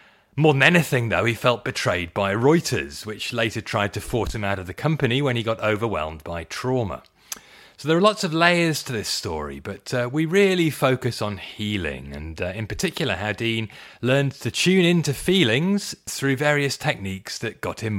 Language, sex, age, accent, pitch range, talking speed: English, male, 30-49, British, 105-150 Hz, 195 wpm